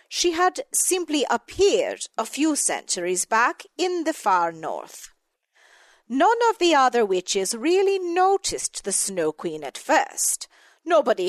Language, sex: English, female